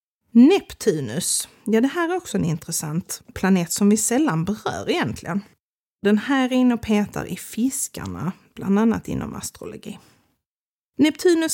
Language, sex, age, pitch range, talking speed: Swedish, female, 30-49, 195-240 Hz, 135 wpm